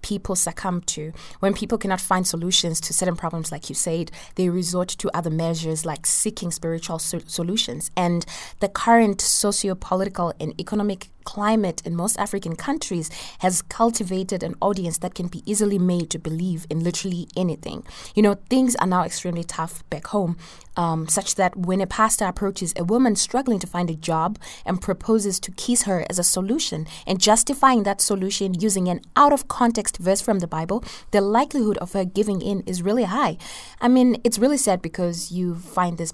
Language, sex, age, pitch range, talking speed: English, female, 20-39, 170-205 Hz, 180 wpm